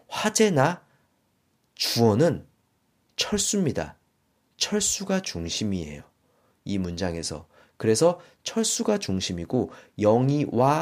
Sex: male